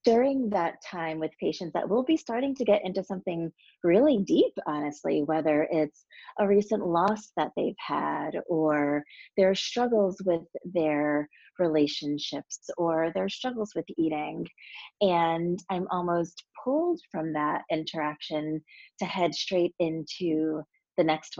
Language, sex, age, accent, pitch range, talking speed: English, female, 30-49, American, 160-215 Hz, 135 wpm